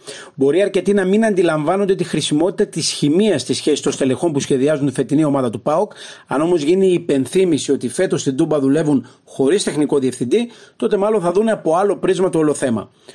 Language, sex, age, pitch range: Greek, male, 40-59, 150-205 Hz